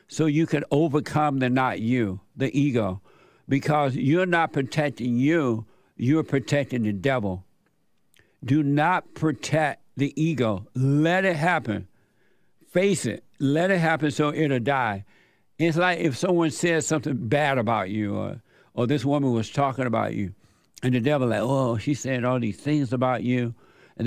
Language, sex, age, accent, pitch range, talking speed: English, male, 60-79, American, 125-155 Hz, 160 wpm